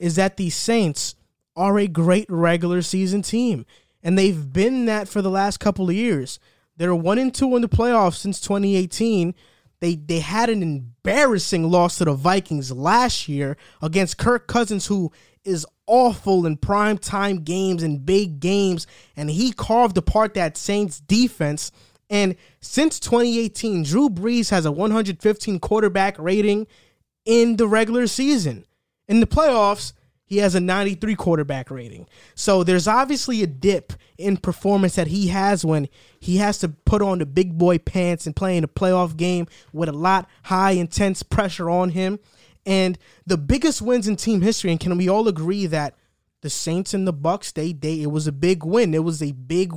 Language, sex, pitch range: English, male, 165-205 Hz